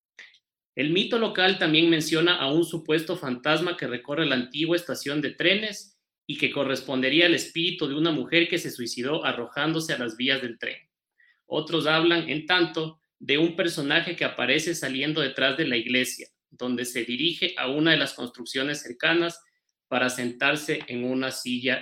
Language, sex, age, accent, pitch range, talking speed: Spanish, male, 30-49, Mexican, 125-175 Hz, 170 wpm